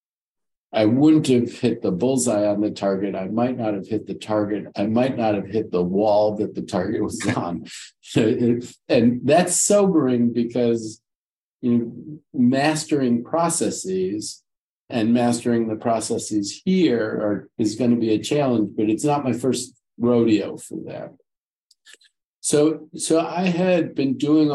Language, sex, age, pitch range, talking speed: English, male, 50-69, 105-130 Hz, 140 wpm